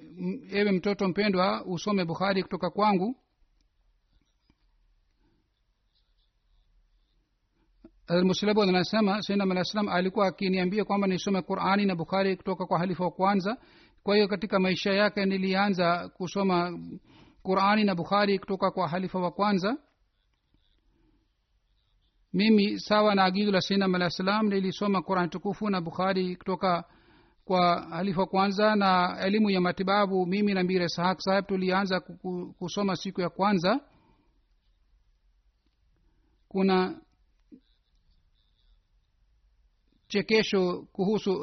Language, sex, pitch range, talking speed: Swahili, male, 180-205 Hz, 100 wpm